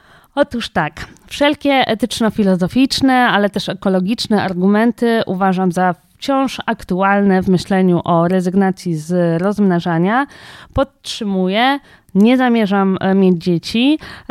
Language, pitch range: Polish, 185-255 Hz